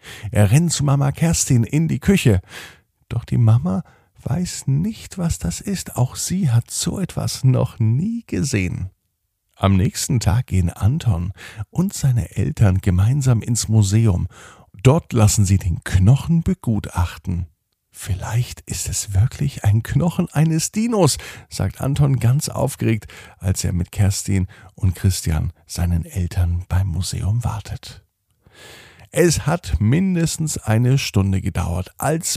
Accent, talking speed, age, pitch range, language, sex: German, 130 wpm, 50-69, 95-130 Hz, German, male